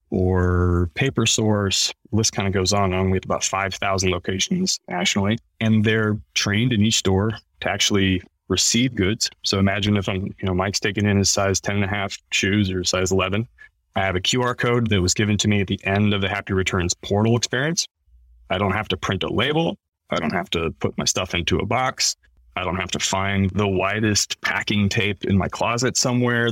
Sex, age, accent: male, 20-39, American